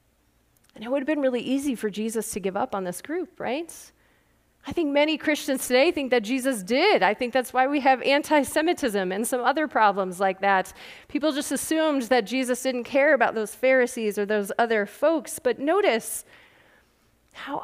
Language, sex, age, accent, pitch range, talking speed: English, female, 30-49, American, 200-280 Hz, 185 wpm